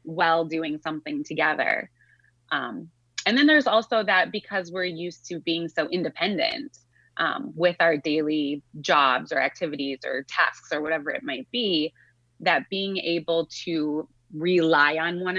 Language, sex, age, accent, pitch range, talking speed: English, female, 20-39, American, 155-180 Hz, 150 wpm